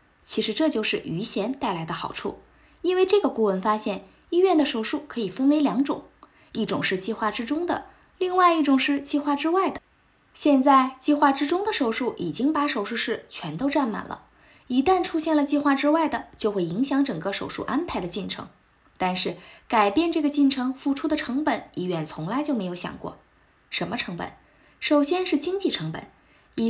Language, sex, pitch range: Chinese, female, 215-310 Hz